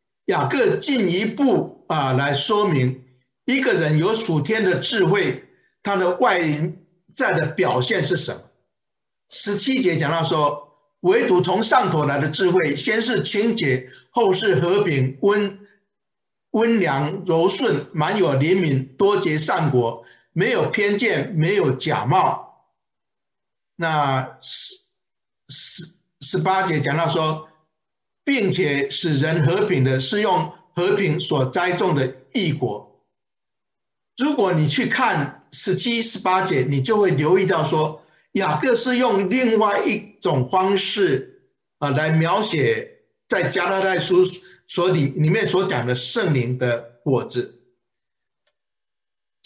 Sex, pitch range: male, 145-210 Hz